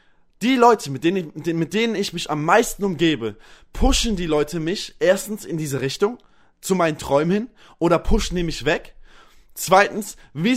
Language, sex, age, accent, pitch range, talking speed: German, male, 20-39, German, 150-195 Hz, 165 wpm